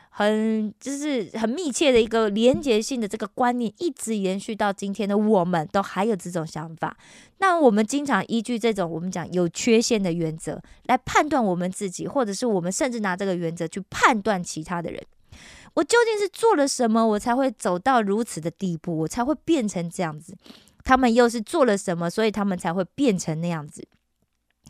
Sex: female